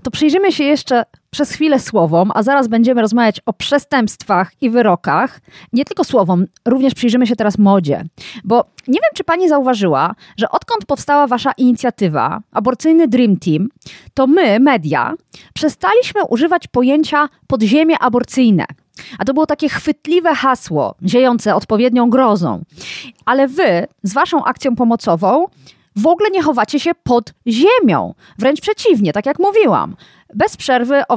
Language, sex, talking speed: Polish, female, 145 wpm